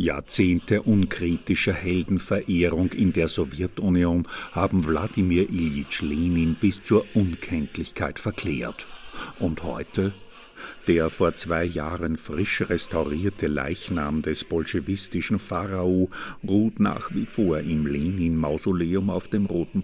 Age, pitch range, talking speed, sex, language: 50-69, 85-105 Hz, 105 wpm, male, German